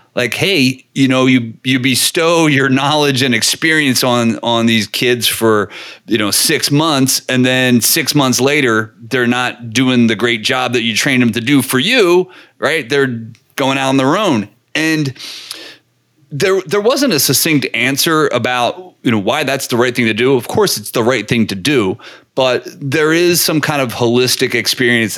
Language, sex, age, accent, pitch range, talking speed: English, male, 30-49, American, 120-150 Hz, 190 wpm